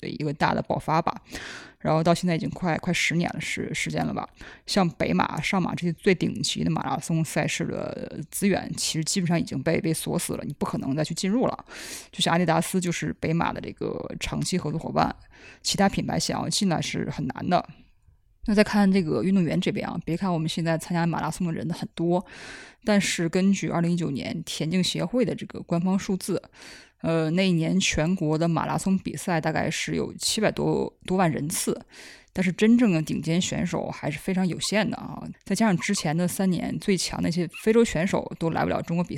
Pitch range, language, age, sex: 165-195 Hz, Chinese, 20-39, female